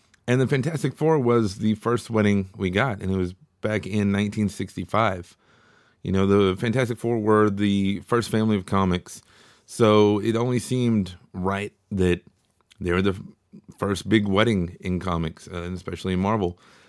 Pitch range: 95-115 Hz